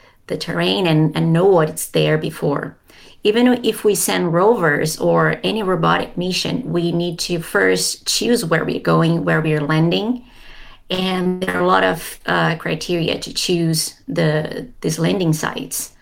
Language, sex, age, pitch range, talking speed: Danish, female, 30-49, 155-180 Hz, 165 wpm